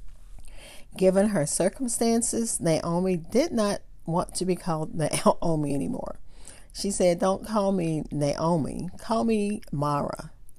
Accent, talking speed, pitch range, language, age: American, 120 wpm, 155-195 Hz, English, 50-69